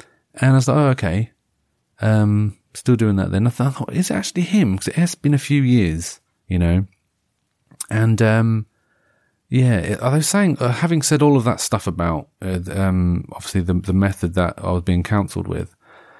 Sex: male